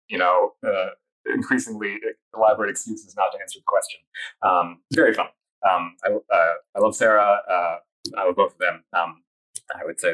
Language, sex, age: English, male, 30-49